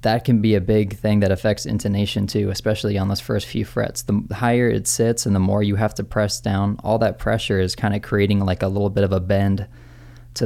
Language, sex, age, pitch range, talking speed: English, male, 20-39, 100-120 Hz, 245 wpm